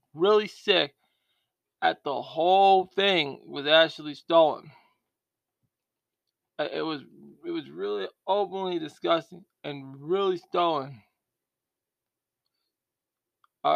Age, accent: 20-39, American